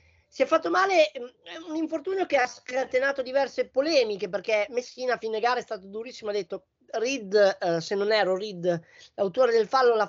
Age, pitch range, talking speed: 20-39, 190-265 Hz, 185 wpm